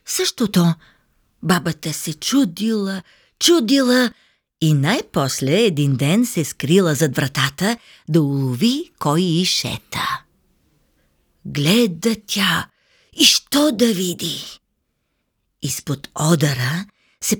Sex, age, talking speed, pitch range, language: female, 50-69, 95 wpm, 165-255 Hz, Bulgarian